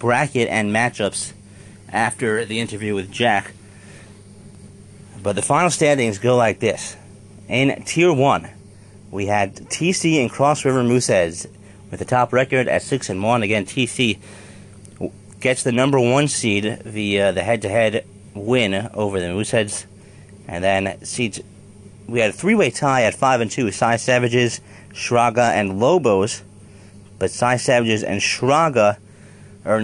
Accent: American